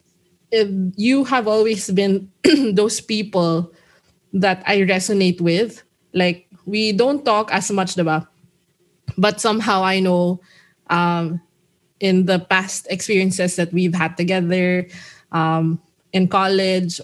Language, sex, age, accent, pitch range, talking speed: English, female, 20-39, Filipino, 175-205 Hz, 115 wpm